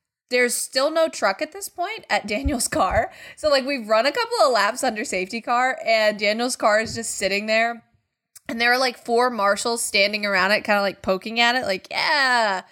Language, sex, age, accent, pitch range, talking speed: English, female, 20-39, American, 210-300 Hz, 210 wpm